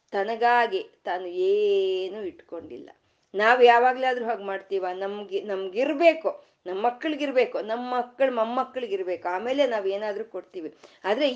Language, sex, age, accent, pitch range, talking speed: Kannada, female, 20-39, native, 200-290 Hz, 105 wpm